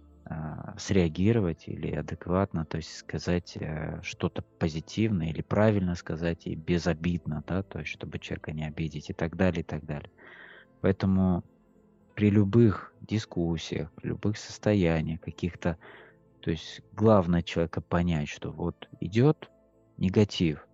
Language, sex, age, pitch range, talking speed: Russian, male, 20-39, 80-100 Hz, 125 wpm